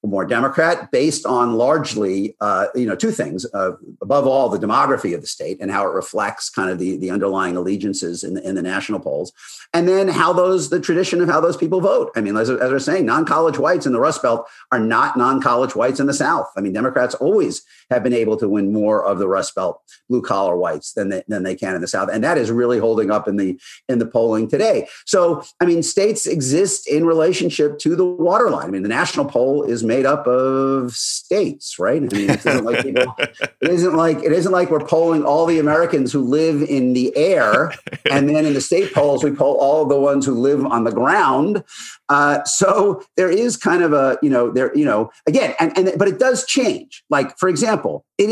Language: English